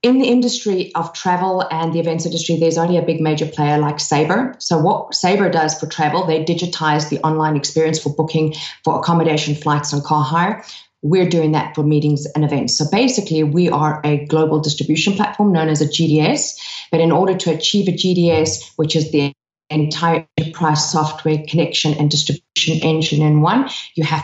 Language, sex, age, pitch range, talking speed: English, female, 30-49, 150-170 Hz, 190 wpm